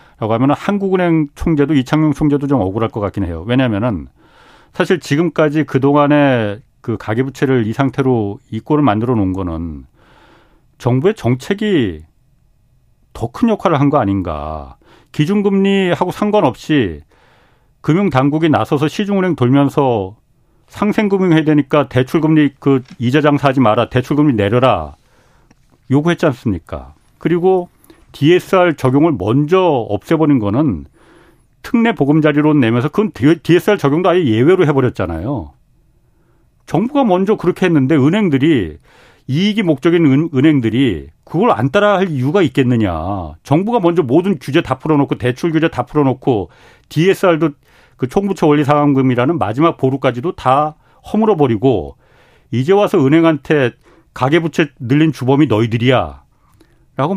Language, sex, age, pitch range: Korean, male, 40-59, 120-165 Hz